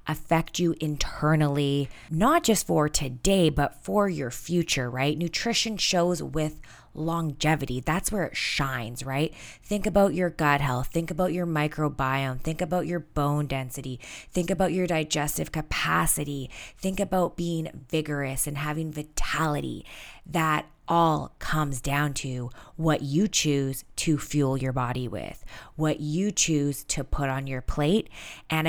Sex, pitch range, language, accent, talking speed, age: female, 140-170 Hz, English, American, 145 wpm, 20-39